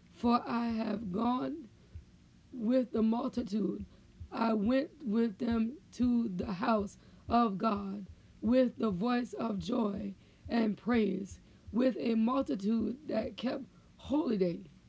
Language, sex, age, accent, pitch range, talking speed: English, female, 20-39, American, 220-255 Hz, 120 wpm